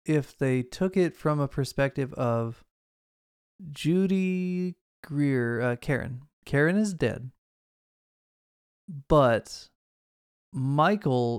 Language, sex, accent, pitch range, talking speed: English, male, American, 125-150 Hz, 90 wpm